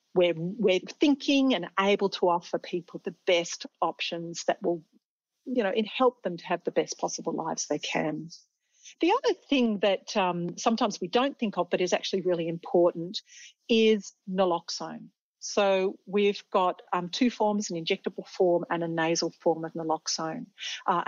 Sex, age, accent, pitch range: female, 40-59, Australian, 170-215 Hz